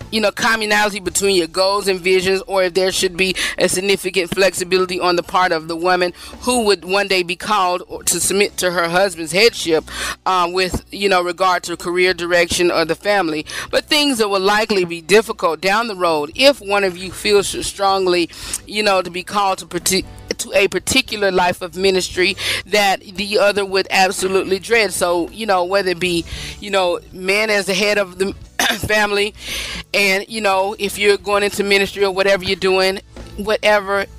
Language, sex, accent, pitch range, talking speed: English, female, American, 180-205 Hz, 190 wpm